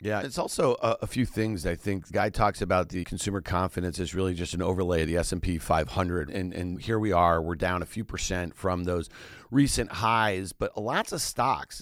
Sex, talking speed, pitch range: male, 220 wpm, 100-135 Hz